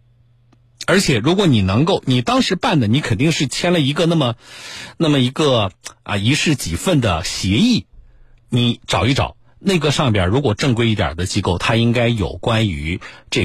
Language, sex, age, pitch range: Chinese, male, 50-69, 100-125 Hz